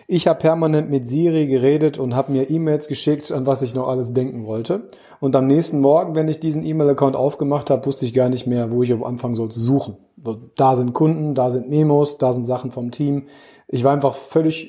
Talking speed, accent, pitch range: 225 wpm, German, 125-150 Hz